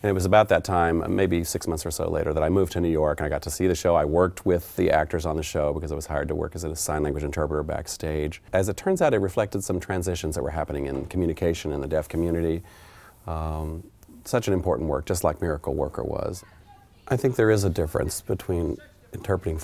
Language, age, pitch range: English, 40-59, 75-95 Hz